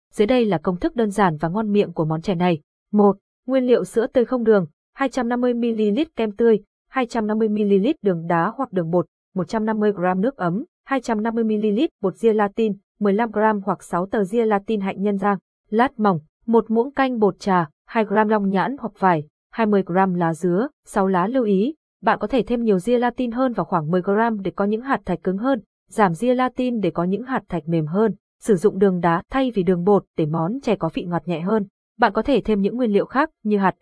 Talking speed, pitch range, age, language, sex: 210 wpm, 190-240 Hz, 20-39, Vietnamese, female